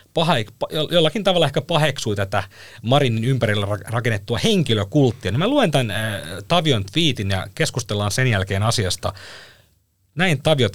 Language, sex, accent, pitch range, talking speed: Finnish, male, native, 100-140 Hz, 125 wpm